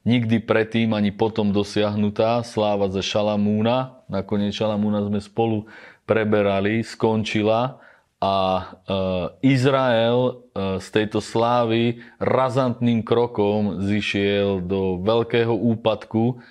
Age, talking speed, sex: 30-49, 100 wpm, male